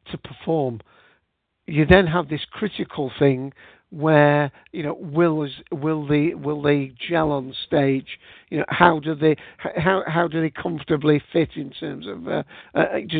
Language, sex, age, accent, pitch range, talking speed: English, male, 50-69, British, 140-170 Hz, 160 wpm